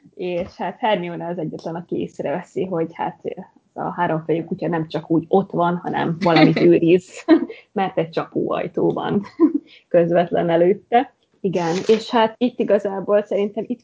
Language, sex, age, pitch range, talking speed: Hungarian, female, 20-39, 175-210 Hz, 150 wpm